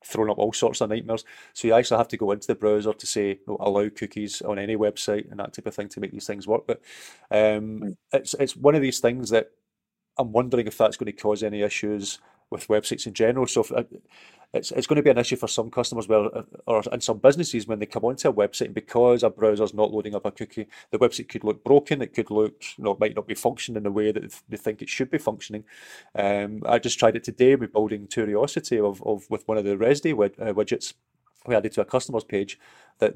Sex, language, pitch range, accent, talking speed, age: male, English, 105-120 Hz, British, 250 wpm, 30-49